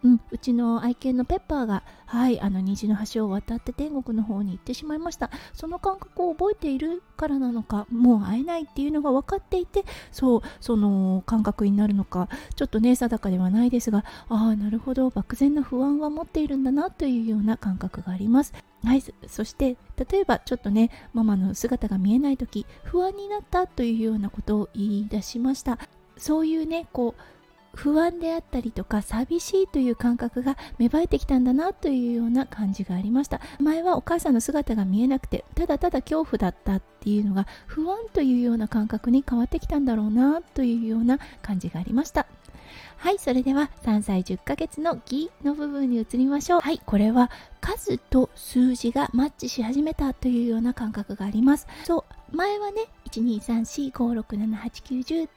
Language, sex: Japanese, female